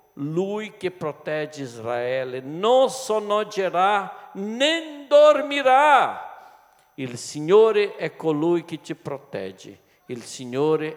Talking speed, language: 95 wpm, Italian